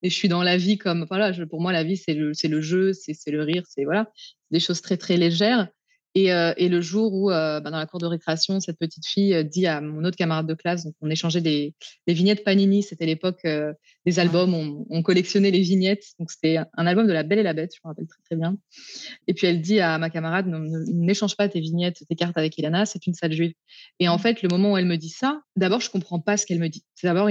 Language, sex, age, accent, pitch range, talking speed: French, female, 20-39, French, 165-205 Hz, 275 wpm